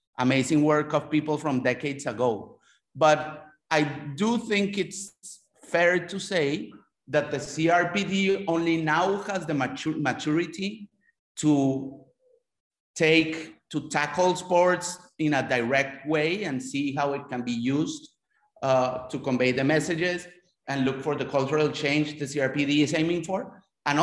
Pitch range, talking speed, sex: 130-180 Hz, 140 wpm, male